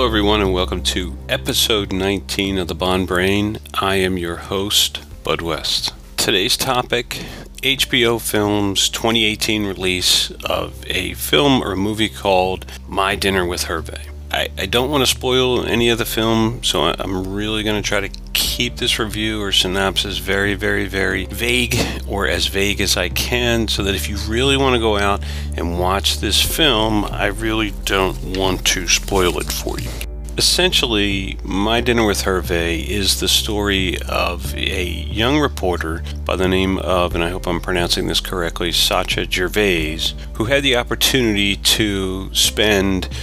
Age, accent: 40-59, American